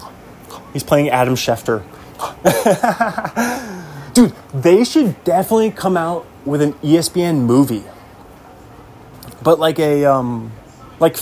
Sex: male